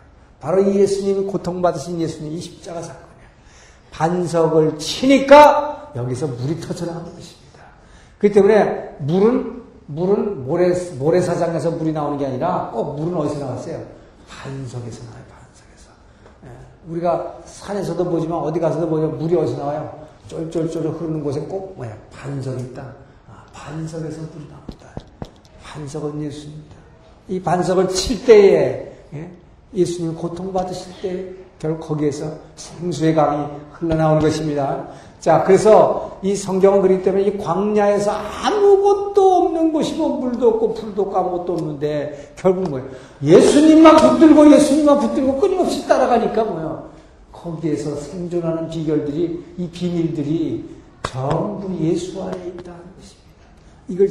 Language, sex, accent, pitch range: Korean, male, native, 150-200 Hz